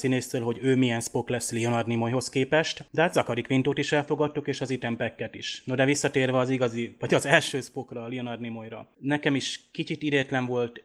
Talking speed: 205 wpm